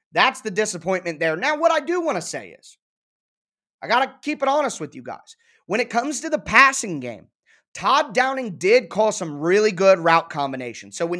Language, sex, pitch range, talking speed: English, male, 175-230 Hz, 210 wpm